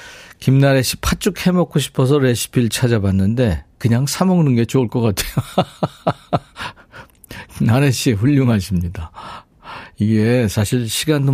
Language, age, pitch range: Korean, 50-69, 105-140 Hz